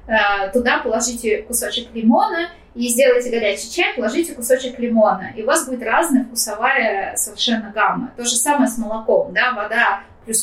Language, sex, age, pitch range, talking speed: Russian, female, 20-39, 225-275 Hz, 155 wpm